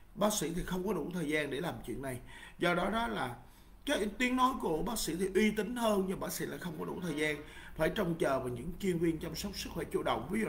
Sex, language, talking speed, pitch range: male, Vietnamese, 285 wpm, 140-195 Hz